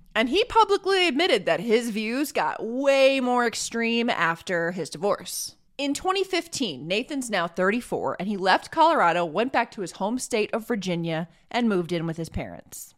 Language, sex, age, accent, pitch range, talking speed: English, female, 20-39, American, 180-270 Hz, 170 wpm